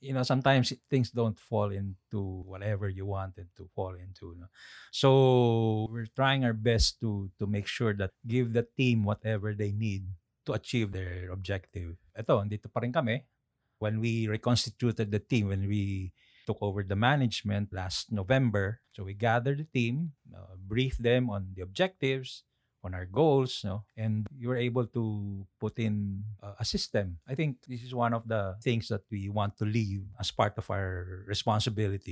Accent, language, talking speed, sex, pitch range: Filipino, English, 175 wpm, male, 100-120 Hz